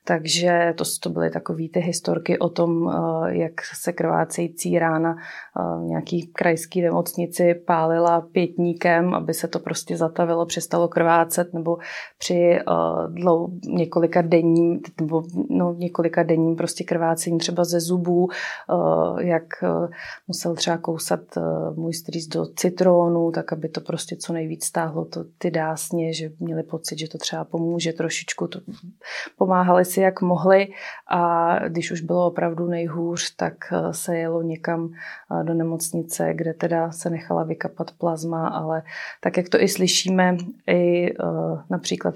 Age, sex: 30-49, female